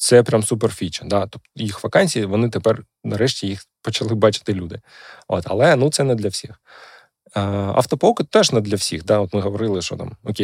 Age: 20-39